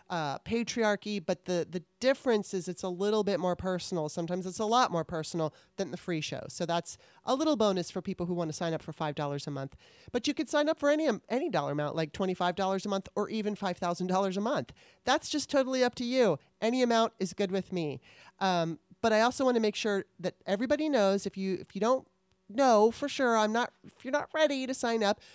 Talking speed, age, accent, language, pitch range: 230 wpm, 30-49, American, English, 175-230 Hz